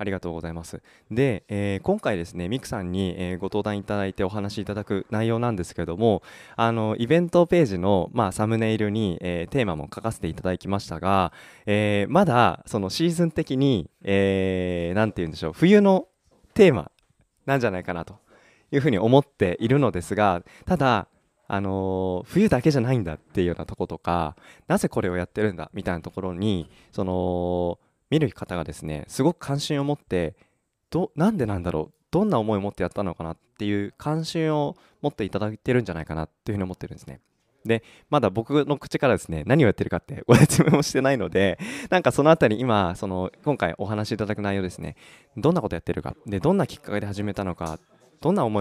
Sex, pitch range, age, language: male, 90-115 Hz, 20-39, Japanese